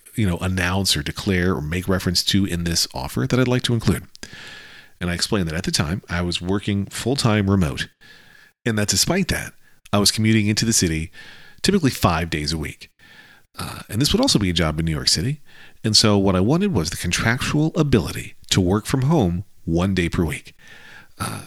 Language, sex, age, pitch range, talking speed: English, male, 40-59, 90-120 Hz, 205 wpm